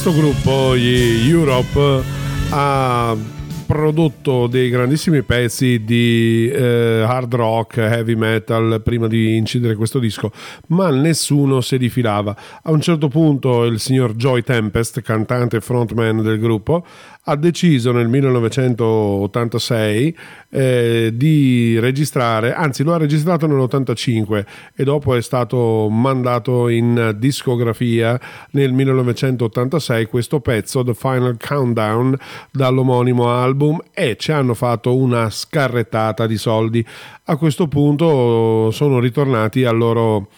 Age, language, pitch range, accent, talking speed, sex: 40-59, Italian, 115-145 Hz, native, 120 wpm, male